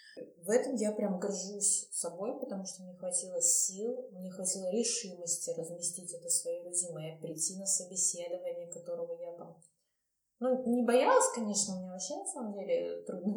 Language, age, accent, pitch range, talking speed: Russian, 20-39, native, 185-255 Hz, 155 wpm